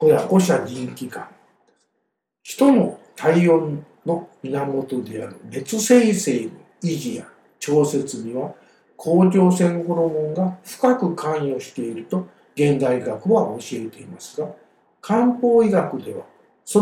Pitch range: 140-185 Hz